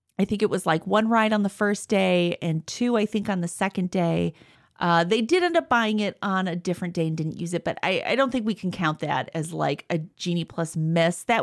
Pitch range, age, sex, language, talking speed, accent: 170-230 Hz, 30-49, female, English, 265 wpm, American